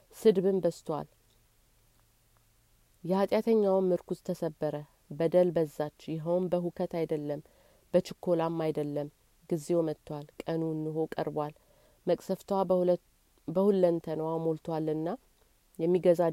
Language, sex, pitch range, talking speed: Amharic, female, 155-185 Hz, 75 wpm